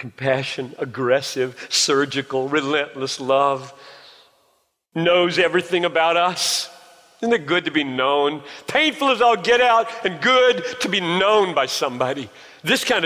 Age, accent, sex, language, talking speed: 50-69, American, male, English, 135 wpm